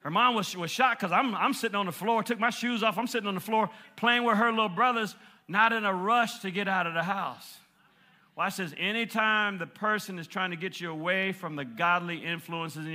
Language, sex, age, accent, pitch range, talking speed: English, male, 40-59, American, 150-200 Hz, 240 wpm